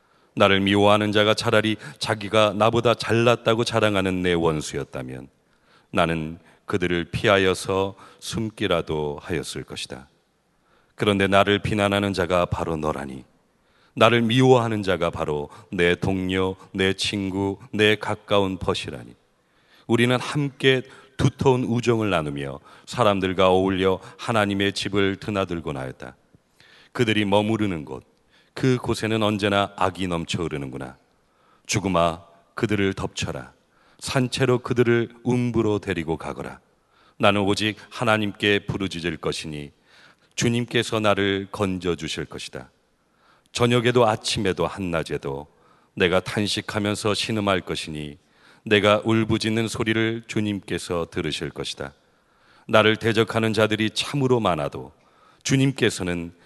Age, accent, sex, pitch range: 40-59, native, male, 85-110 Hz